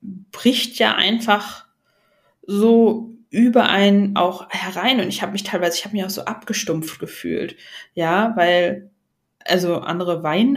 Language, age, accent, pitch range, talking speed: German, 20-39, German, 175-215 Hz, 140 wpm